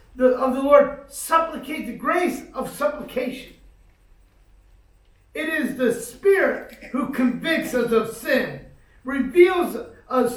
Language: English